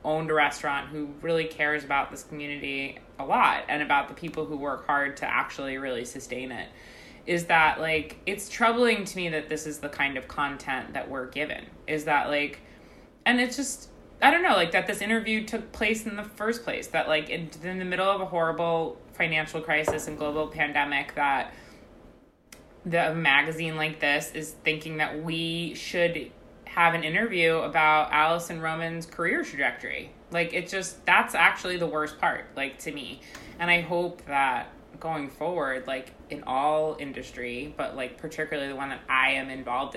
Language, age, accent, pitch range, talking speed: English, 20-39, American, 145-170 Hz, 180 wpm